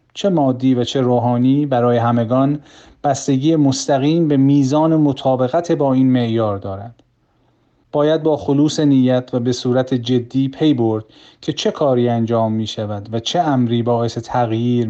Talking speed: 150 wpm